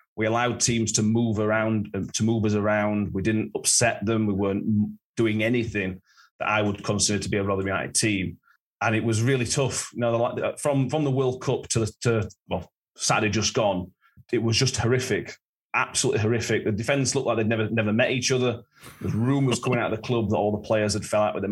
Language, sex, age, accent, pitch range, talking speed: English, male, 30-49, British, 105-120 Hz, 215 wpm